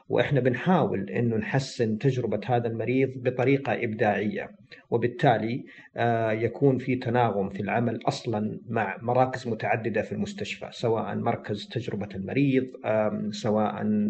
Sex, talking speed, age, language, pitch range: male, 110 wpm, 50-69, Arabic, 105-130 Hz